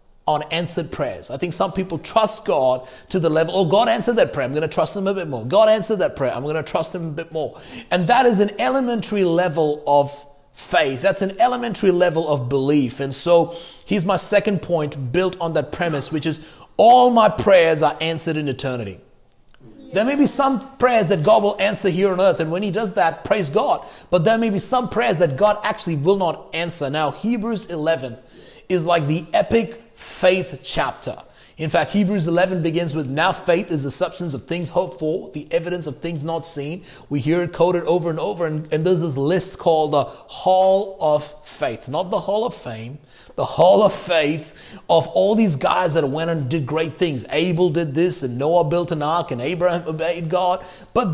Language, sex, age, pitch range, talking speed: English, male, 30-49, 155-195 Hz, 210 wpm